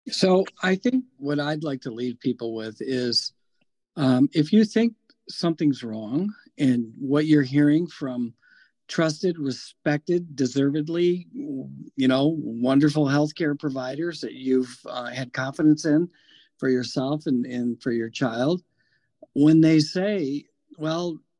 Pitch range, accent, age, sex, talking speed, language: 130-170 Hz, American, 50-69, male, 130 wpm, English